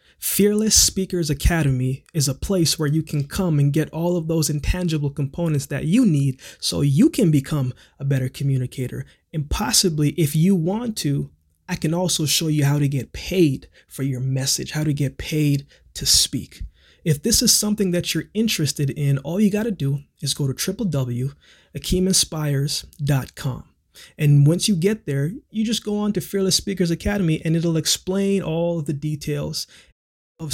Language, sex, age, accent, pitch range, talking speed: English, male, 20-39, American, 140-180 Hz, 175 wpm